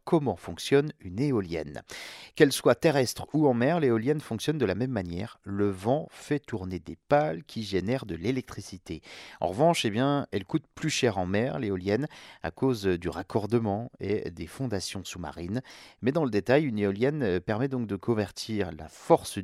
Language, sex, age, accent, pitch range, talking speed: French, male, 40-59, French, 95-135 Hz, 175 wpm